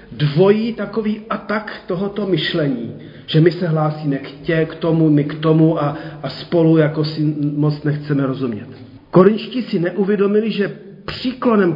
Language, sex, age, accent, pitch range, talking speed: Czech, male, 40-59, native, 150-200 Hz, 155 wpm